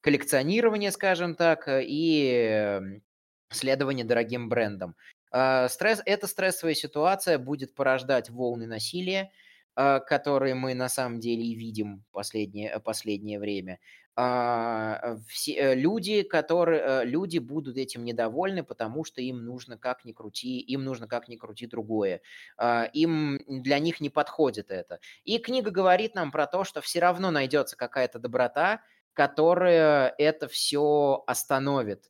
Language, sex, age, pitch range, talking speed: Russian, male, 20-39, 115-165 Hz, 120 wpm